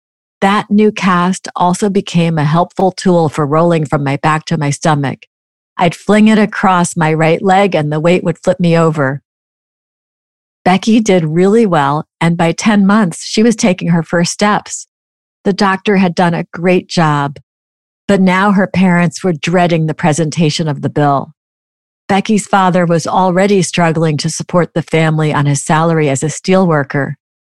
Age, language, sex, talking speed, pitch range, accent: 50-69, English, female, 170 wpm, 155-190 Hz, American